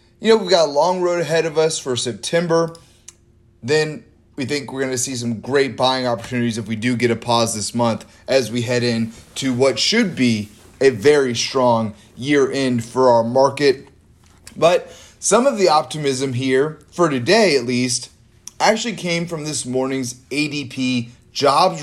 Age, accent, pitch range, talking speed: 30-49, American, 120-155 Hz, 175 wpm